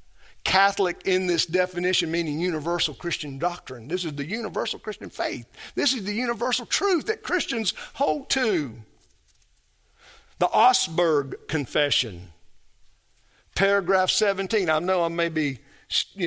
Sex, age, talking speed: male, 50-69, 125 wpm